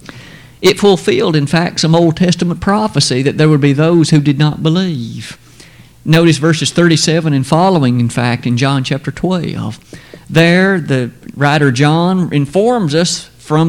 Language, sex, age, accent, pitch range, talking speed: English, male, 50-69, American, 140-190 Hz, 155 wpm